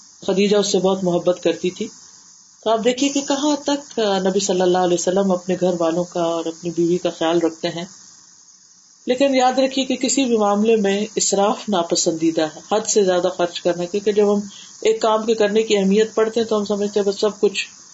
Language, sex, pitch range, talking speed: Urdu, female, 175-220 Hz, 180 wpm